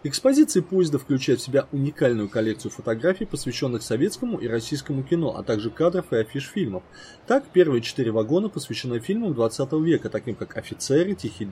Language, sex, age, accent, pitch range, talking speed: Russian, male, 20-39, native, 115-180 Hz, 160 wpm